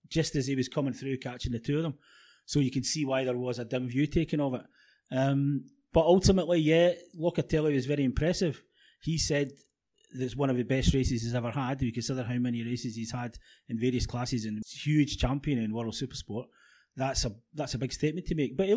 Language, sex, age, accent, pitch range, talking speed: English, male, 30-49, British, 125-165 Hz, 230 wpm